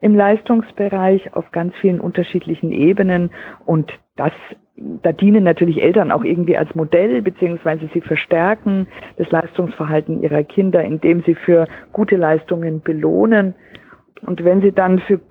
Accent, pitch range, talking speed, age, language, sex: German, 170-205 Hz, 135 wpm, 50-69, German, female